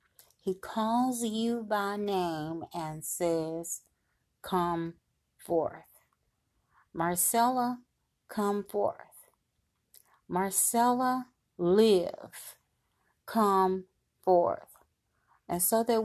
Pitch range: 170-220 Hz